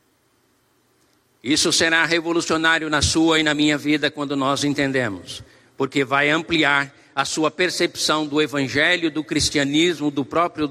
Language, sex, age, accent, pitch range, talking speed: Portuguese, male, 60-79, Brazilian, 145-195 Hz, 135 wpm